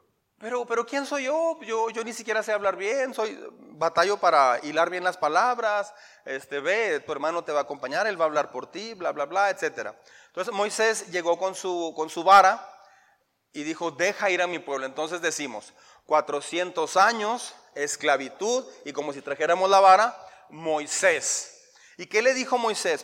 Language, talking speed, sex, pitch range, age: Spanish, 180 wpm, male, 160-235 Hz, 30-49